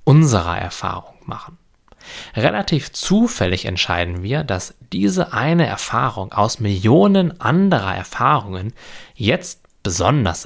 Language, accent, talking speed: German, German, 100 wpm